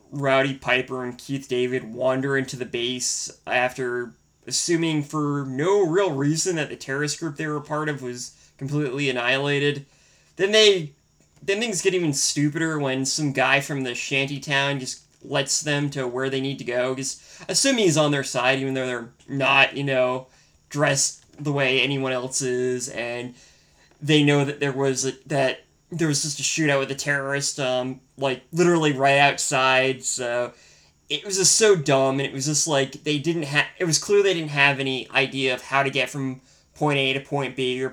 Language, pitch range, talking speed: English, 130-145 Hz, 195 wpm